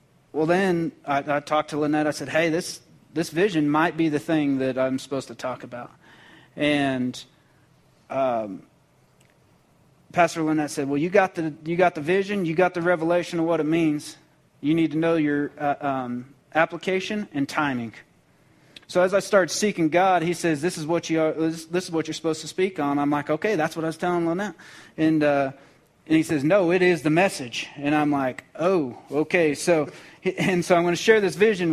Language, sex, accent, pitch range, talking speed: English, male, American, 150-180 Hz, 205 wpm